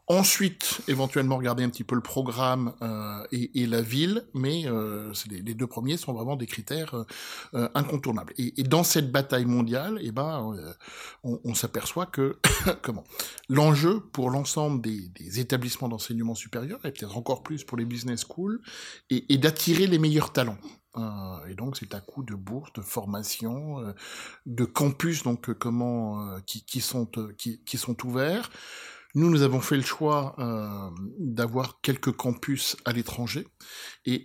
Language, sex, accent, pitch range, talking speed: French, male, French, 115-150 Hz, 170 wpm